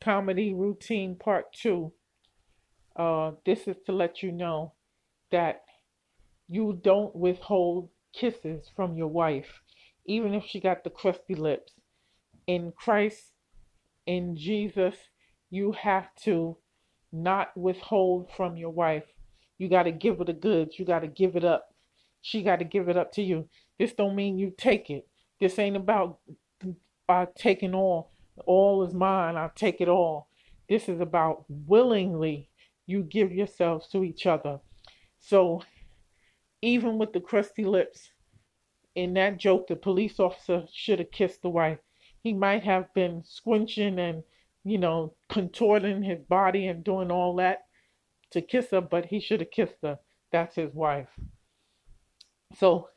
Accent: American